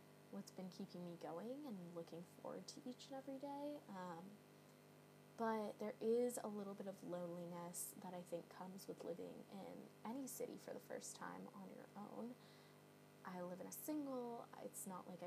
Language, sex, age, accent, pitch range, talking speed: English, female, 10-29, American, 180-240 Hz, 180 wpm